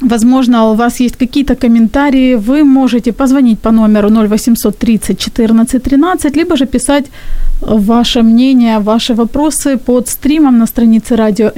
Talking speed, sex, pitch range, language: 130 wpm, female, 215-255 Hz, Ukrainian